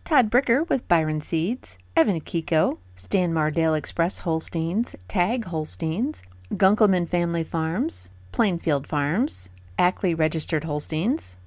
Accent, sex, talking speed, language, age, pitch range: American, female, 110 wpm, English, 30-49, 160-220 Hz